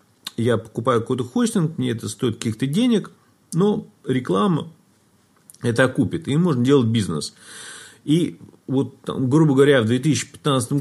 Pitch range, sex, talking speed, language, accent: 115-150 Hz, male, 130 wpm, Russian, native